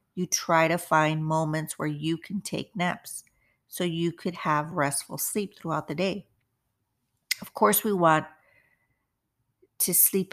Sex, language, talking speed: female, English, 145 wpm